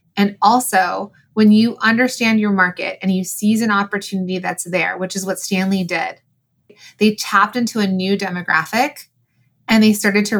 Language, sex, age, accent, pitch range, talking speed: English, female, 20-39, American, 180-225 Hz, 165 wpm